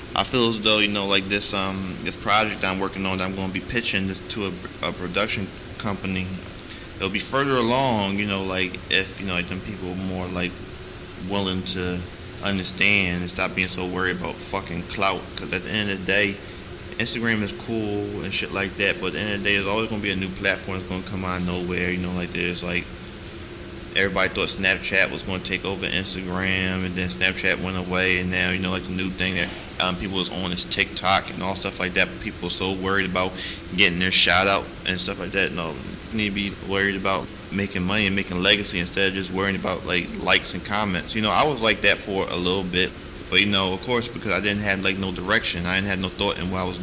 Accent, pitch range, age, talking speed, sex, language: American, 90-100 Hz, 20-39, 250 wpm, male, English